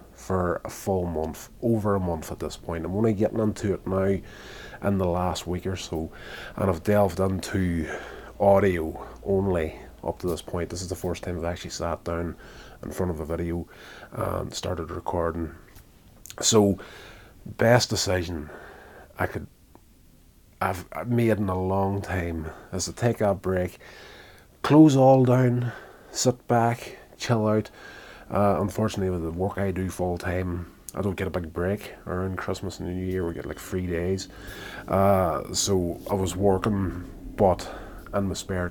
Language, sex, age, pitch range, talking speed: English, male, 30-49, 85-100 Hz, 160 wpm